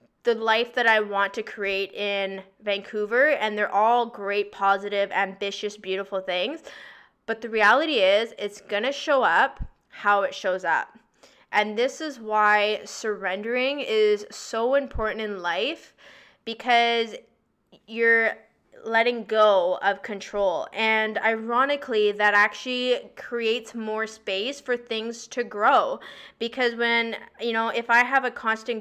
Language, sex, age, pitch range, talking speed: English, female, 20-39, 200-235 Hz, 135 wpm